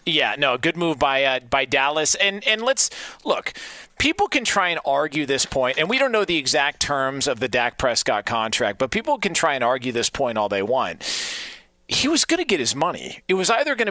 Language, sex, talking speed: English, male, 230 wpm